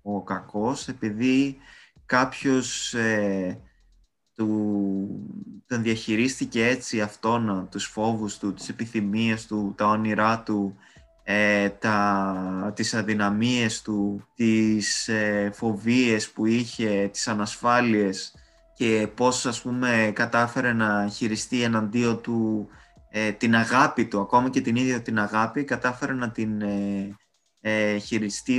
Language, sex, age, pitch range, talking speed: Greek, male, 20-39, 105-125 Hz, 100 wpm